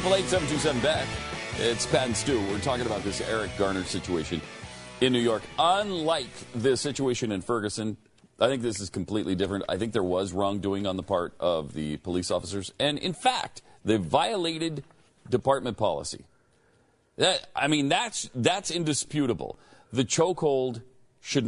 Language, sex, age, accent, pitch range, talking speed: English, male, 40-59, American, 95-135 Hz, 155 wpm